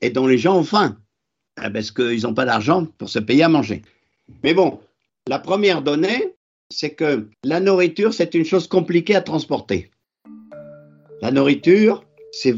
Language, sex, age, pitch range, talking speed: French, male, 50-69, 145-195 Hz, 160 wpm